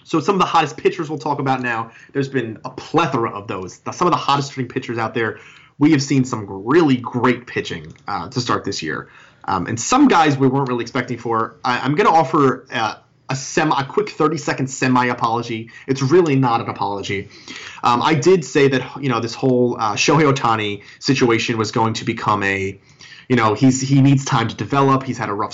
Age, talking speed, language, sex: 20-39, 215 wpm, English, male